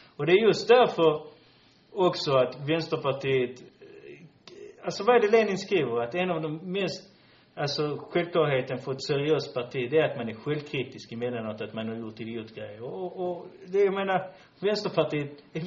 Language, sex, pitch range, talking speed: Swedish, male, 120-160 Hz, 170 wpm